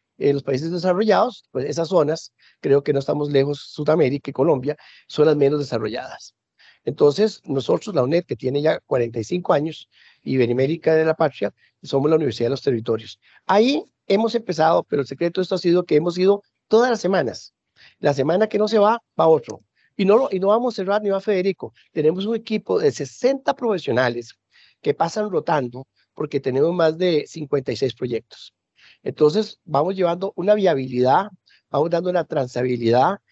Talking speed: 175 wpm